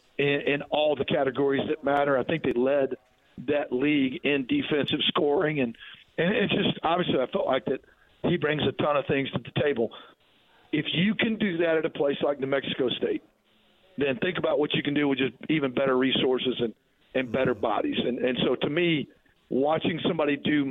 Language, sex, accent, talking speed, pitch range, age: English, male, American, 205 wpm, 135-155 Hz, 50-69